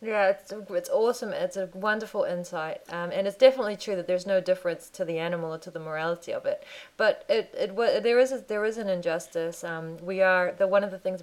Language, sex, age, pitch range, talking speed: English, female, 20-39, 175-260 Hz, 240 wpm